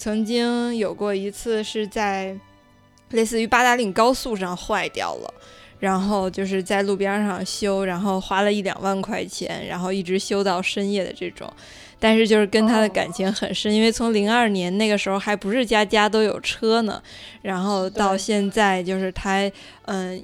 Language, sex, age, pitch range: Chinese, female, 20-39, 190-220 Hz